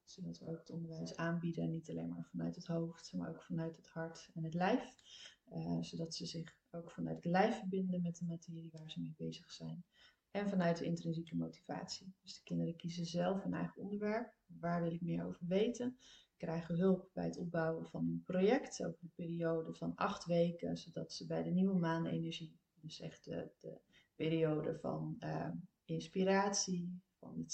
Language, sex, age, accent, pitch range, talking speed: Dutch, female, 30-49, Dutch, 150-185 Hz, 185 wpm